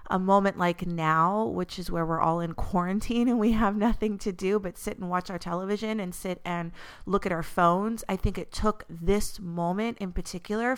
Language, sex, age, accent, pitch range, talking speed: English, female, 30-49, American, 160-200 Hz, 210 wpm